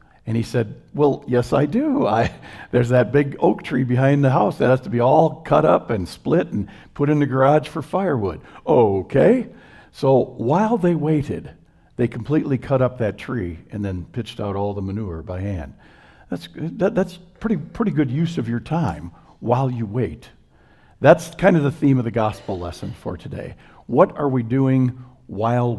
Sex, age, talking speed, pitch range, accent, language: male, 50-69, 190 wpm, 110-140 Hz, American, English